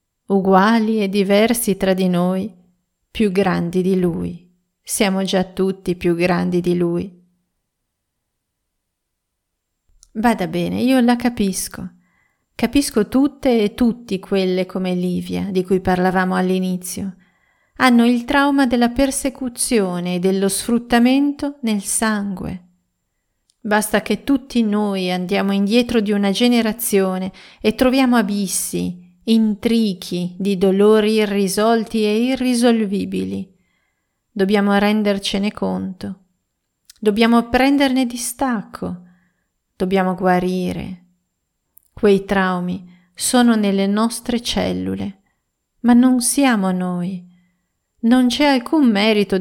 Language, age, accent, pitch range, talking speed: Italian, 40-59, native, 180-230 Hz, 100 wpm